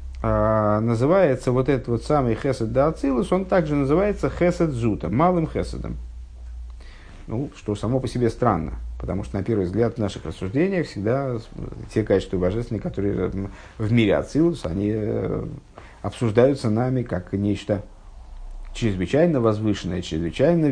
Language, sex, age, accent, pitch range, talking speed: Russian, male, 50-69, native, 100-130 Hz, 125 wpm